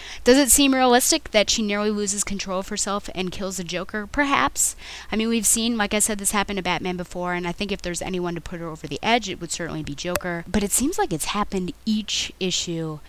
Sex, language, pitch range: female, English, 155-200 Hz